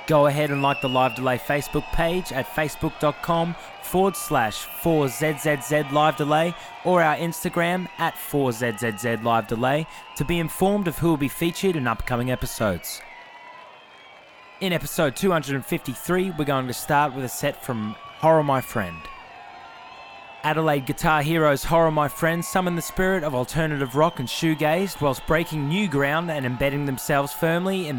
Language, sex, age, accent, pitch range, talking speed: English, male, 20-39, Australian, 135-170 Hz, 145 wpm